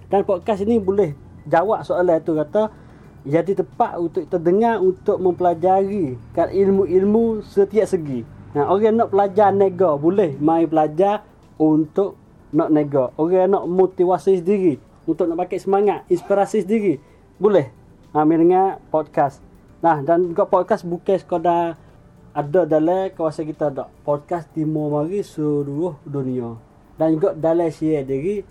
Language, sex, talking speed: Malay, male, 135 wpm